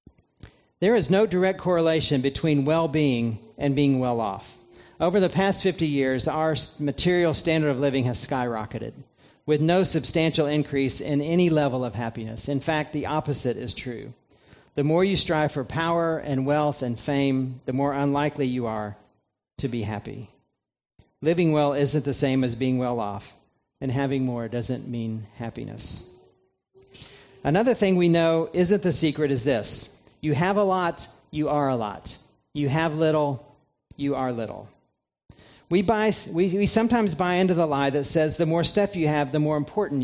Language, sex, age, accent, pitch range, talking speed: English, male, 40-59, American, 130-165 Hz, 165 wpm